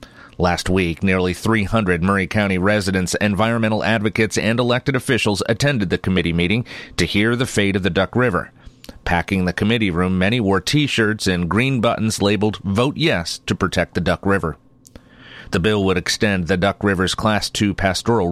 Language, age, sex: English, 40-59, male